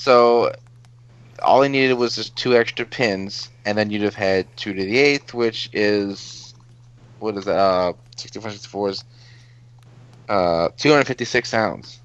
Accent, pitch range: American, 100-120 Hz